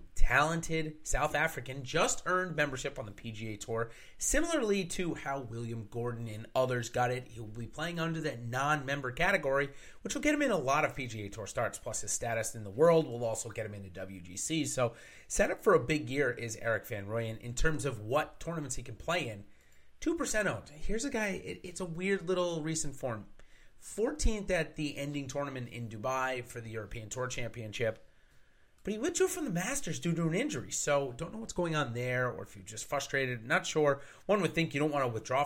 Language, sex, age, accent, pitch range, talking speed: English, male, 30-49, American, 115-160 Hz, 210 wpm